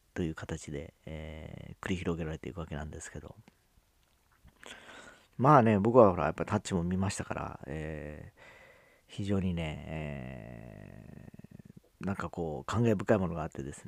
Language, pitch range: Japanese, 80-115 Hz